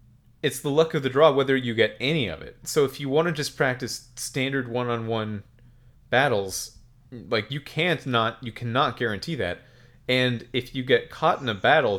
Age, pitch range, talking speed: 30-49, 105-125 Hz, 190 wpm